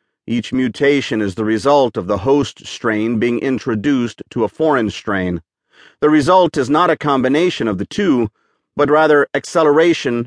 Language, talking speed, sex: English, 160 wpm, male